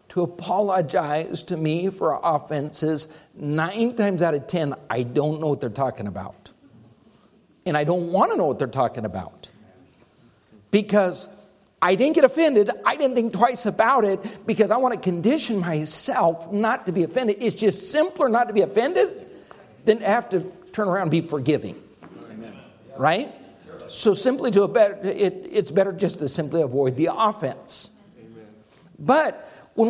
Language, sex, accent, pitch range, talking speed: English, male, American, 155-235 Hz, 165 wpm